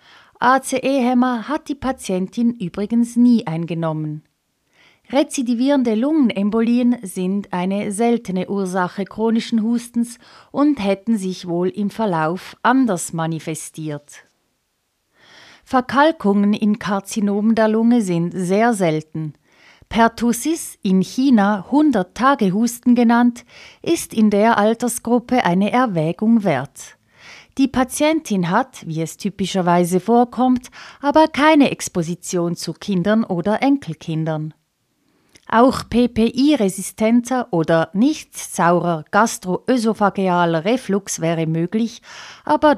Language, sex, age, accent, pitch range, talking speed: German, female, 30-49, Swiss, 180-250 Hz, 95 wpm